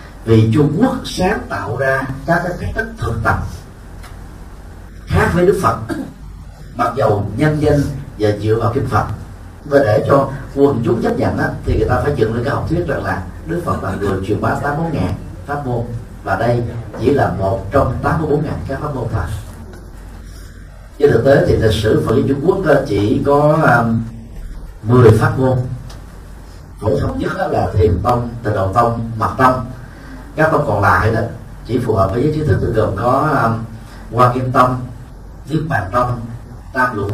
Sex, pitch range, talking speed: male, 100-135 Hz, 175 wpm